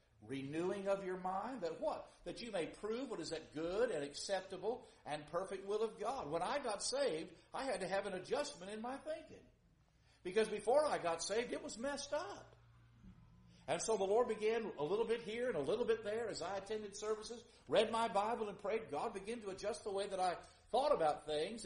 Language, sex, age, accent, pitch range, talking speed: English, male, 50-69, American, 160-235 Hz, 215 wpm